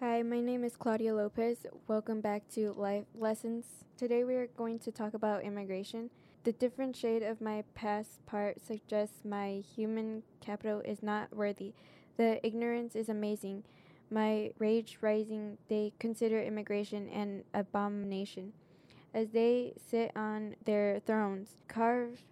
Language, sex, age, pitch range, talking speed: English, female, 10-29, 195-225 Hz, 140 wpm